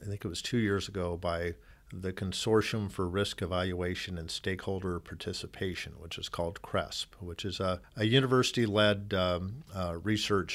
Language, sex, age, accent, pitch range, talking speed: English, male, 50-69, American, 95-110 Hz, 160 wpm